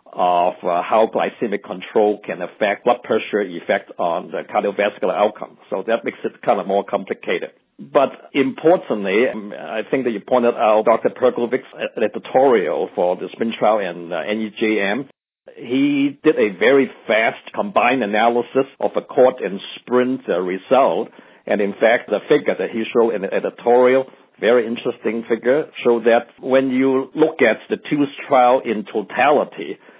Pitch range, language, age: 110-130 Hz, English, 60-79